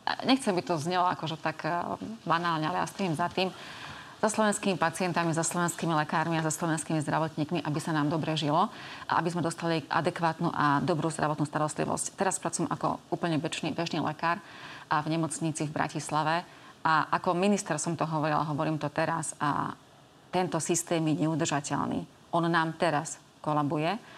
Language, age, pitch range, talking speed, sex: Slovak, 30-49, 155-175 Hz, 160 wpm, female